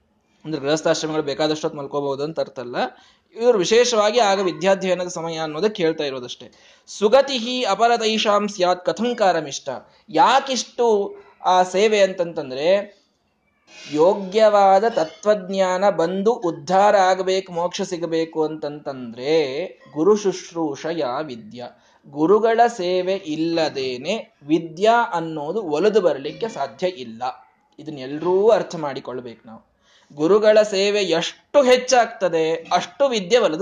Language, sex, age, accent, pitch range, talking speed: Kannada, male, 20-39, native, 165-220 Hz, 95 wpm